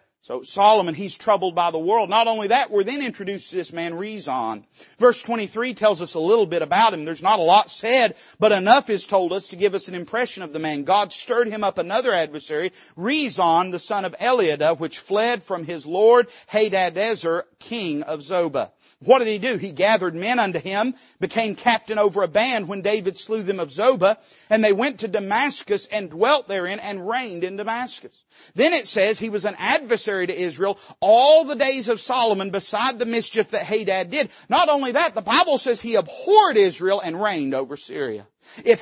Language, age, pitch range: English, 40-59, 175-240 Hz